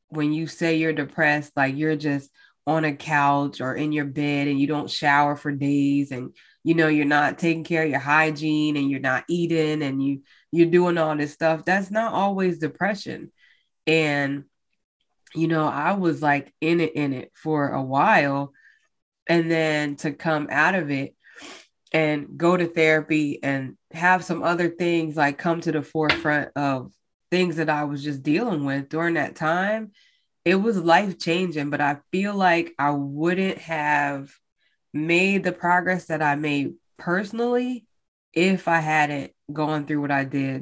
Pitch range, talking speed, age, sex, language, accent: 145-170 Hz, 175 wpm, 20-39, female, English, American